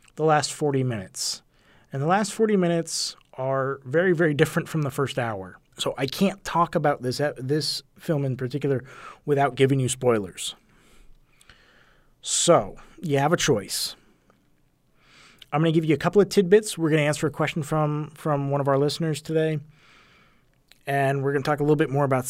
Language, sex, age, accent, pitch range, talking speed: English, male, 30-49, American, 135-160 Hz, 175 wpm